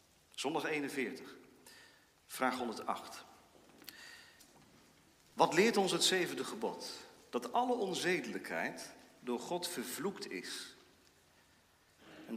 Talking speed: 85 wpm